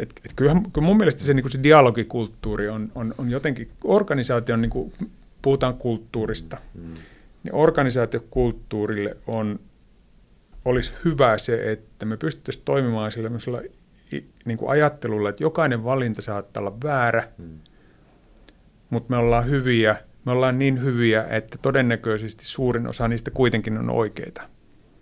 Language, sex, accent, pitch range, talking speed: Finnish, male, native, 110-130 Hz, 130 wpm